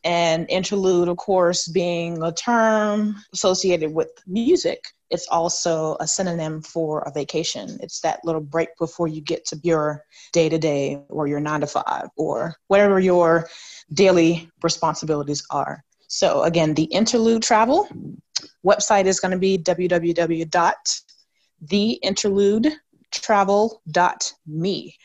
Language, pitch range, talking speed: English, 165-220 Hz, 115 wpm